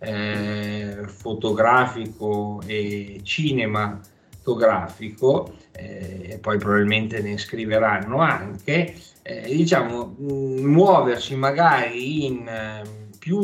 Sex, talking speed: male, 65 wpm